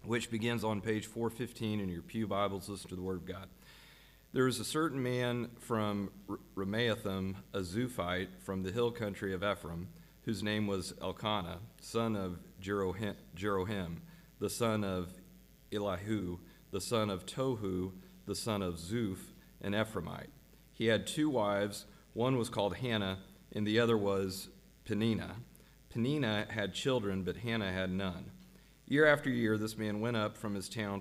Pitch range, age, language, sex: 95-115 Hz, 40-59, English, male